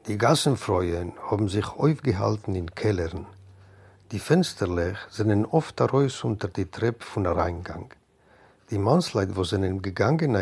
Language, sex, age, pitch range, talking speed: French, male, 60-79, 100-130 Hz, 130 wpm